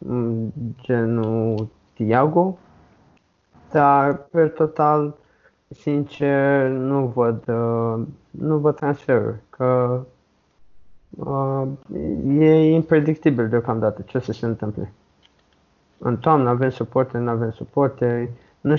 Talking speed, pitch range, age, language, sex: 90 wpm, 120-145 Hz, 20-39, Romanian, male